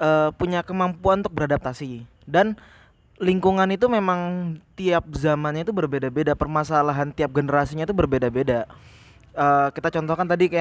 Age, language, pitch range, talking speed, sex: 20-39, Indonesian, 145-175 Hz, 130 wpm, male